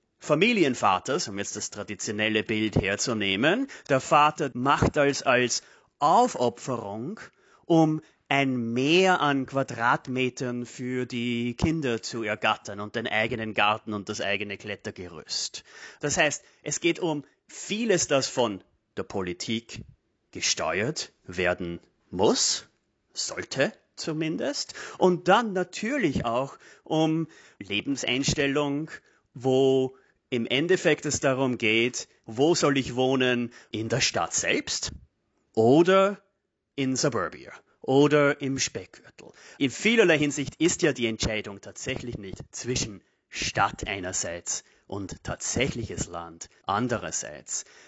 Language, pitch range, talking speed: German, 110-145 Hz, 110 wpm